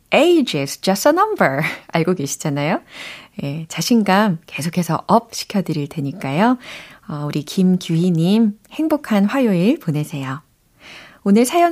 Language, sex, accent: Korean, female, native